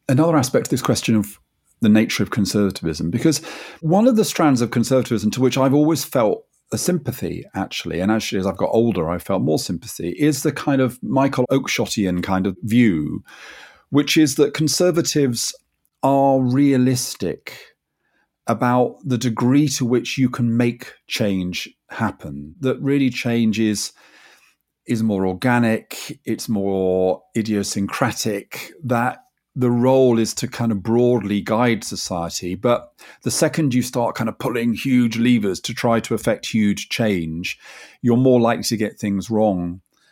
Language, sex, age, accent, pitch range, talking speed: English, male, 40-59, British, 105-135 Hz, 155 wpm